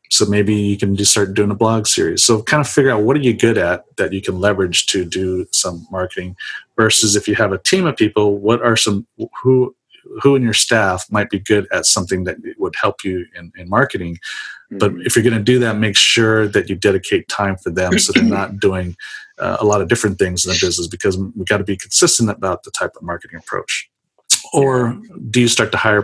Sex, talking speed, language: male, 235 wpm, English